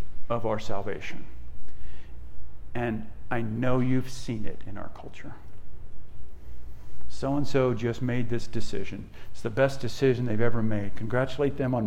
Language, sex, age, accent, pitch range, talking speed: English, male, 50-69, American, 110-125 Hz, 135 wpm